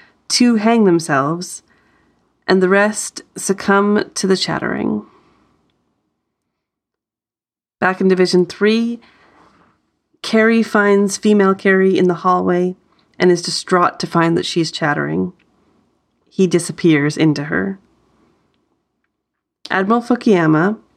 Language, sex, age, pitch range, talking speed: English, female, 30-49, 165-195 Hz, 100 wpm